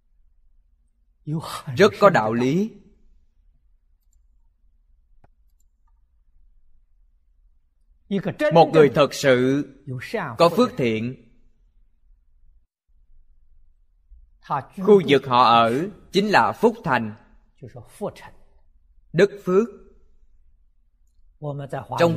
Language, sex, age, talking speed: Vietnamese, male, 20-39, 60 wpm